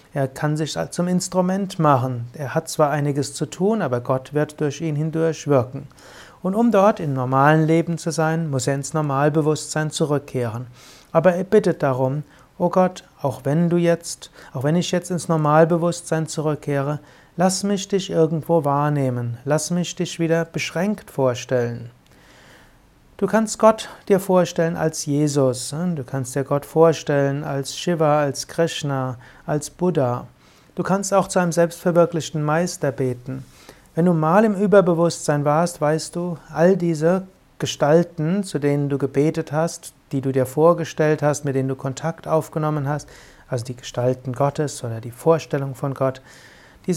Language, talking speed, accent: German, 160 wpm, German